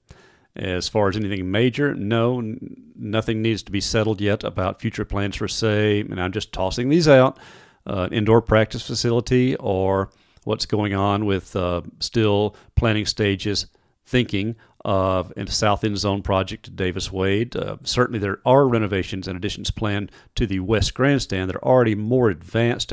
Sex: male